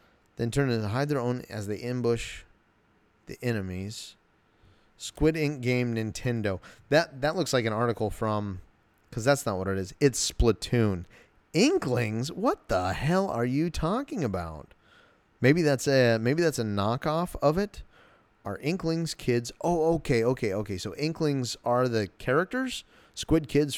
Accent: American